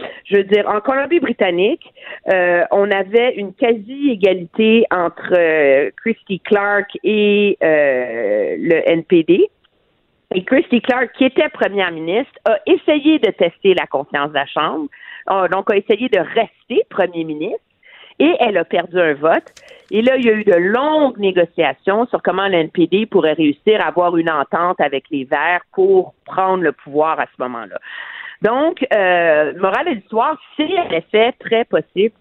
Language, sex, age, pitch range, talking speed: French, female, 50-69, 170-250 Hz, 160 wpm